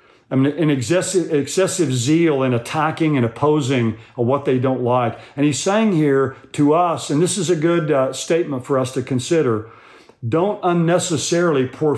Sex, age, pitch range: male, 50-69, 125-155 Hz